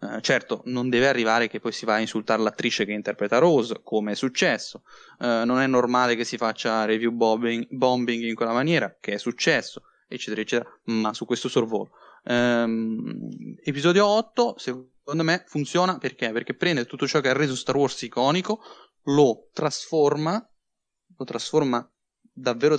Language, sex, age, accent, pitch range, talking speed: Italian, male, 20-39, native, 120-150 Hz, 155 wpm